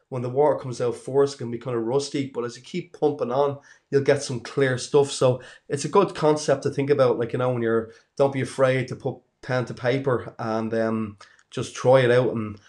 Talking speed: 240 wpm